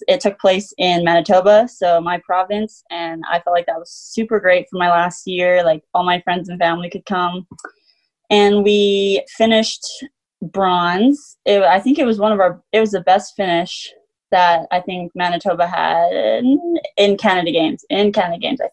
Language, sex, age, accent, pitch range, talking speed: English, female, 20-39, American, 175-210 Hz, 185 wpm